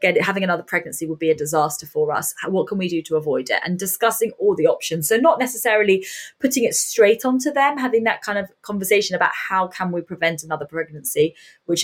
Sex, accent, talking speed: female, British, 215 wpm